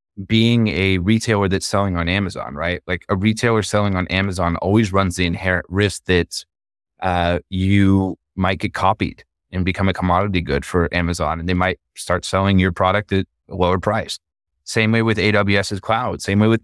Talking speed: 185 wpm